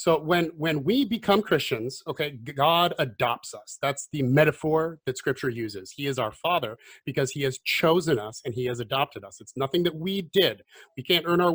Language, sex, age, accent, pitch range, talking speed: English, male, 30-49, American, 130-180 Hz, 205 wpm